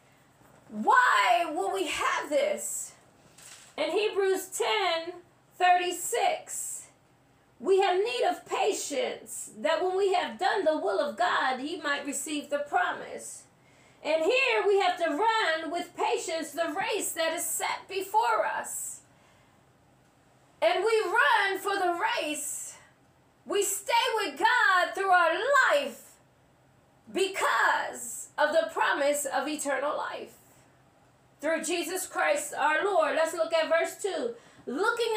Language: English